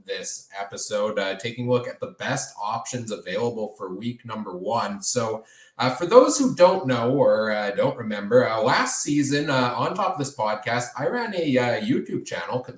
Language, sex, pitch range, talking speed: English, male, 115-160 Hz, 195 wpm